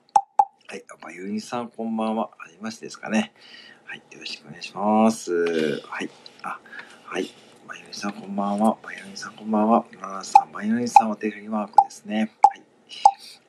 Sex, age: male, 40-59